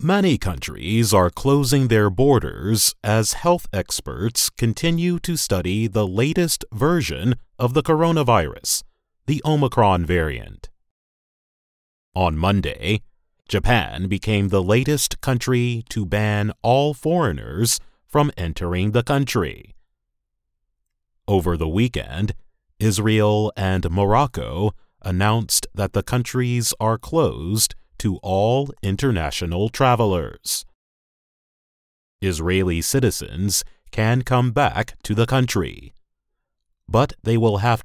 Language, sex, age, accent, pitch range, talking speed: English, male, 30-49, American, 95-125 Hz, 100 wpm